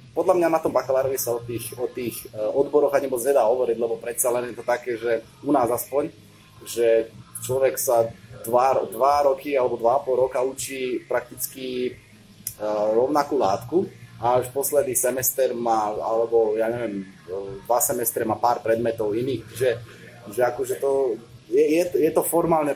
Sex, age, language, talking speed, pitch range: male, 20-39, Slovak, 165 wpm, 115-135 Hz